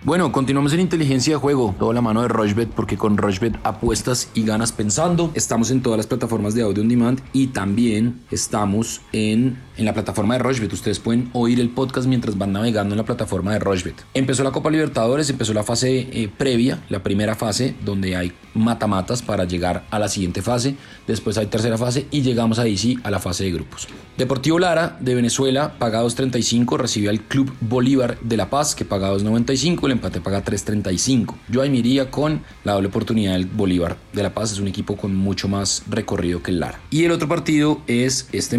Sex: male